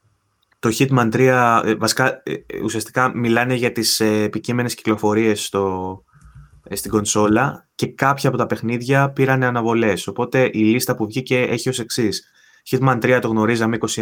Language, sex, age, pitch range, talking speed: Greek, male, 20-39, 105-125 Hz, 140 wpm